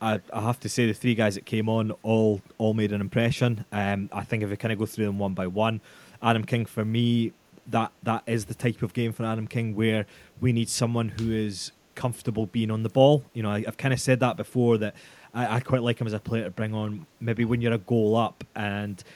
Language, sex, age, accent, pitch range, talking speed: English, male, 20-39, British, 110-125 Hz, 255 wpm